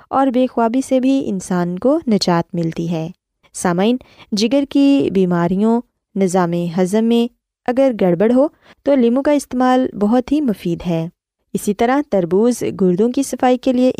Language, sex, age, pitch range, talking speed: Urdu, female, 20-39, 185-255 Hz, 155 wpm